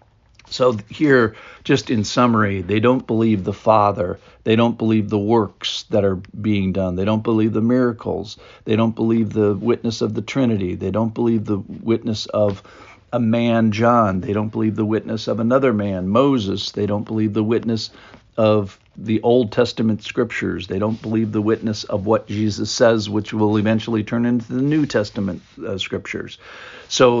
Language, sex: English, male